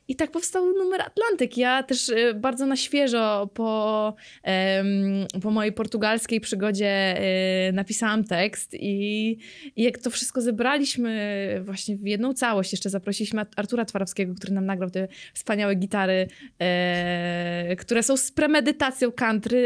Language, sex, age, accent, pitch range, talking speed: Polish, female, 20-39, native, 205-270 Hz, 130 wpm